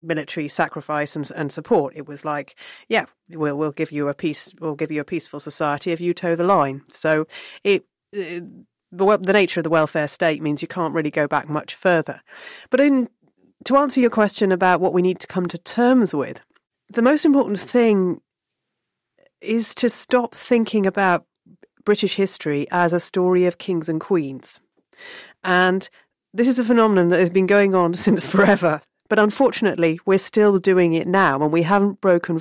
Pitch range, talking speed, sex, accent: 155-200 Hz, 185 wpm, female, British